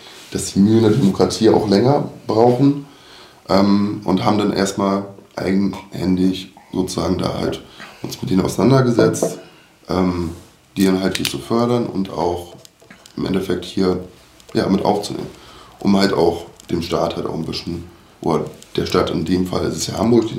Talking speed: 160 wpm